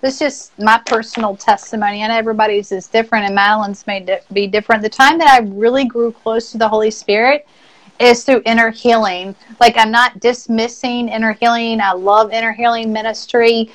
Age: 40-59